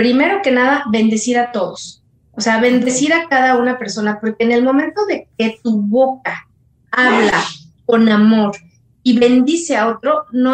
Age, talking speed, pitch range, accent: 30-49, 165 wpm, 210-265 Hz, Mexican